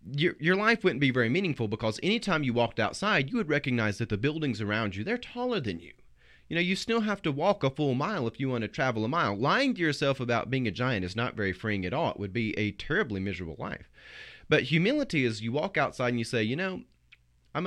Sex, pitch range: male, 110-155 Hz